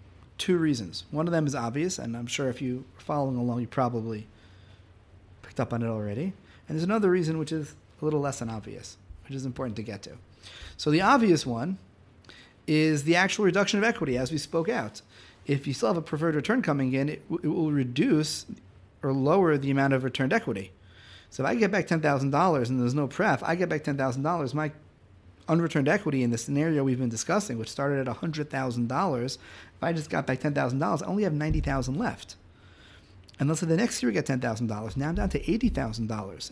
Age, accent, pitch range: 40-59, American, 115-155 Hz